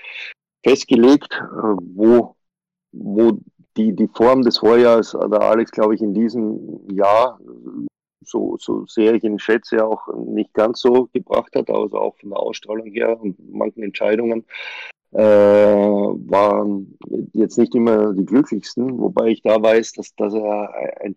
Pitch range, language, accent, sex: 105-115 Hz, German, German, male